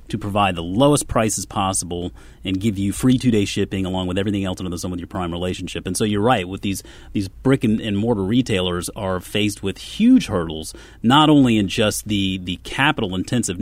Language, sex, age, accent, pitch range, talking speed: English, male, 30-49, American, 95-120 Hz, 205 wpm